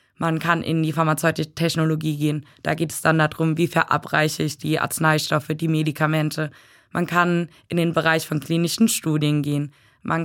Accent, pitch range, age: German, 155-170 Hz, 20-39